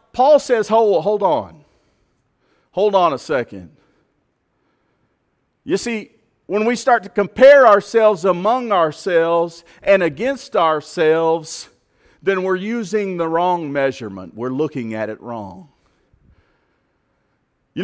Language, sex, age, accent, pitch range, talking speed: English, male, 40-59, American, 170-230 Hz, 115 wpm